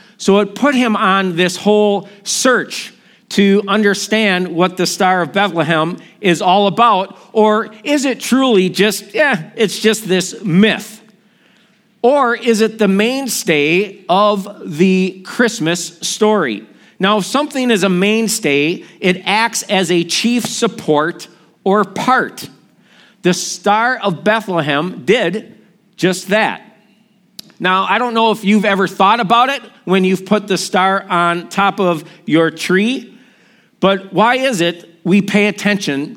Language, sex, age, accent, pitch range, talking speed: English, male, 50-69, American, 185-220 Hz, 140 wpm